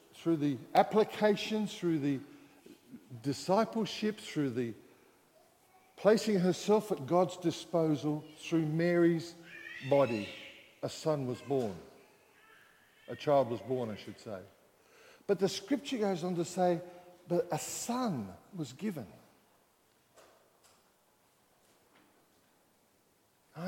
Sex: male